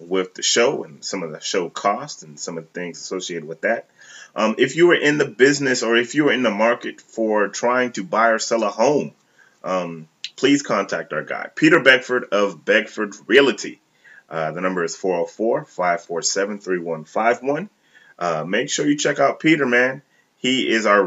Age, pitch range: 30-49, 95-125 Hz